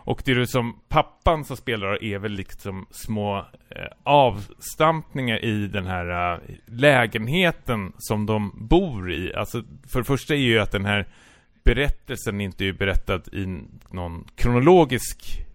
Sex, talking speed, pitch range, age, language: male, 155 wpm, 95-125 Hz, 30-49, Swedish